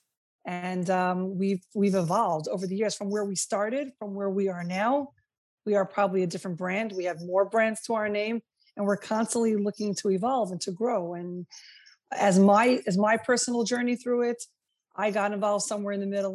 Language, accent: English, American